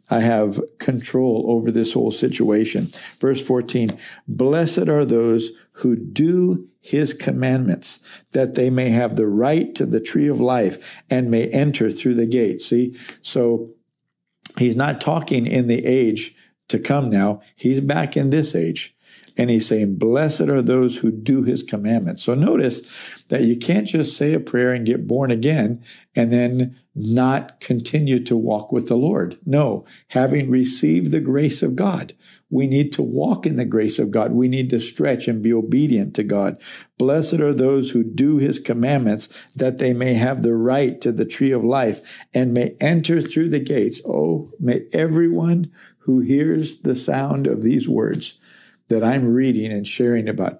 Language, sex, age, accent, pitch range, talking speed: English, male, 60-79, American, 115-140 Hz, 175 wpm